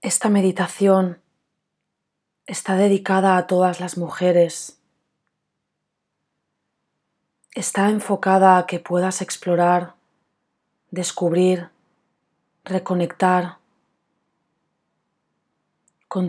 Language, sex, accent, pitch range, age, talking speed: Spanish, female, Spanish, 175-190 Hz, 30-49, 65 wpm